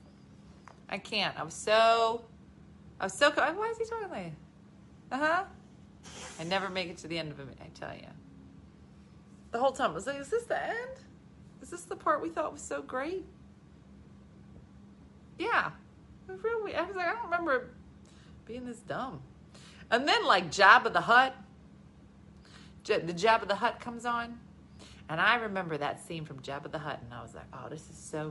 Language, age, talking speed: English, 40-59, 185 wpm